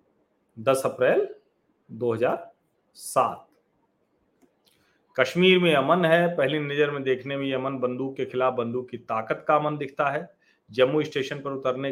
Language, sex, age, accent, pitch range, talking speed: Hindi, male, 40-59, native, 115-155 Hz, 140 wpm